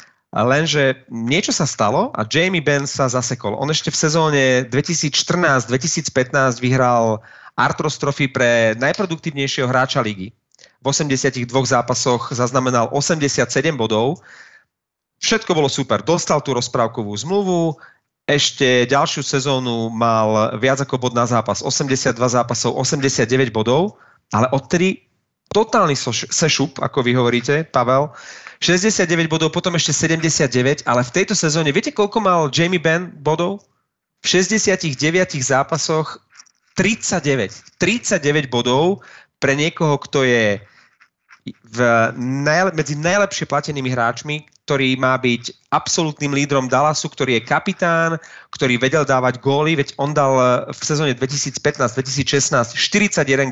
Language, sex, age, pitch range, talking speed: Slovak, male, 30-49, 125-160 Hz, 120 wpm